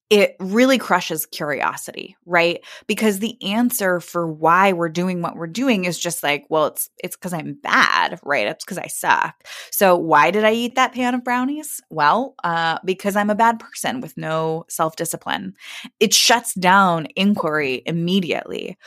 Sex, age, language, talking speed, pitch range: female, 20-39, English, 170 wpm, 170-220 Hz